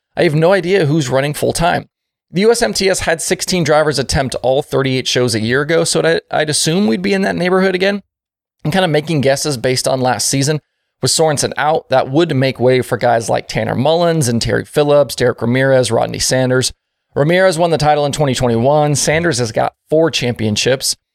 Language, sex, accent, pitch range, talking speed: English, male, American, 120-160 Hz, 195 wpm